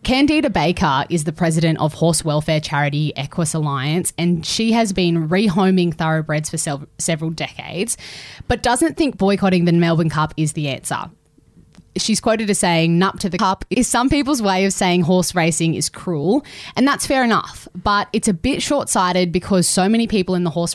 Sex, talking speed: female, 185 wpm